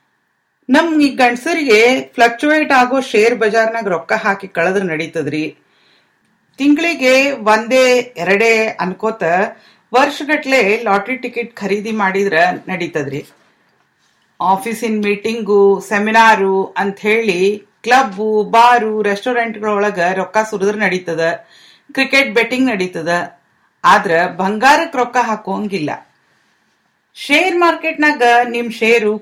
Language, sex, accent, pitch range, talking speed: English, female, Indian, 190-245 Hz, 40 wpm